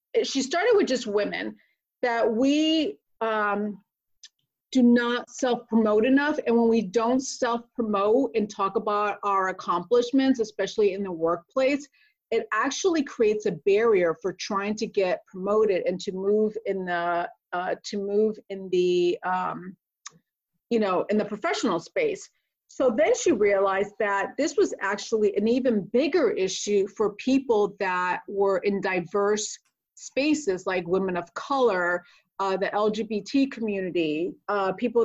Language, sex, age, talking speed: English, female, 30-49, 140 wpm